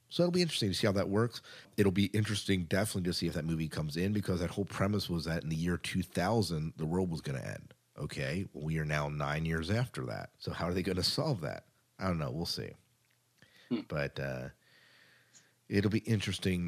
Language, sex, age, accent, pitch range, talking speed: English, male, 40-59, American, 85-120 Hz, 225 wpm